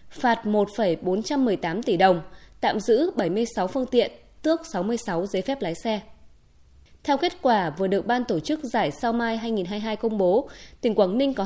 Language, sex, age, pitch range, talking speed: Vietnamese, female, 20-39, 205-260 Hz, 175 wpm